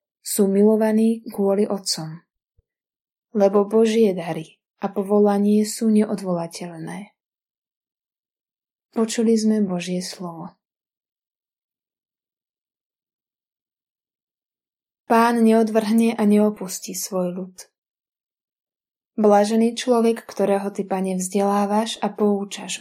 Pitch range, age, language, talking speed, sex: 190-225 Hz, 20-39, Slovak, 75 wpm, female